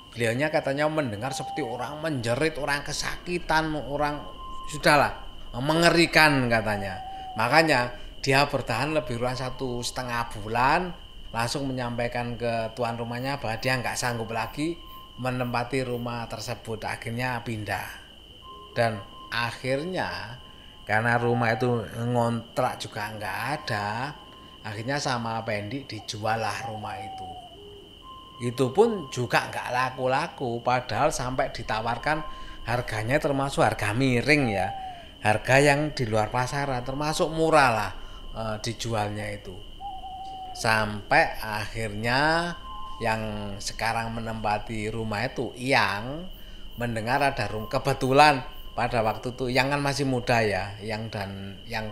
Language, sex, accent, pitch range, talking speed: Indonesian, male, native, 110-145 Hz, 115 wpm